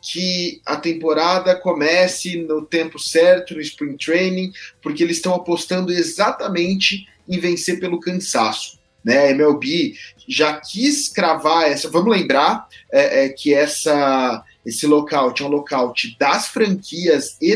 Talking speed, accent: 135 wpm, Brazilian